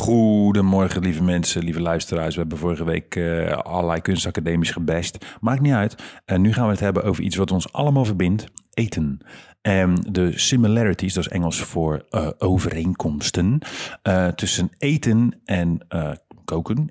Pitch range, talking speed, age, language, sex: 85-100 Hz, 155 wpm, 40-59, Dutch, male